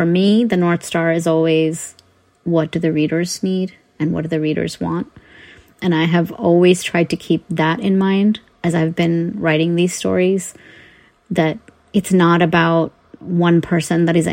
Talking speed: 175 wpm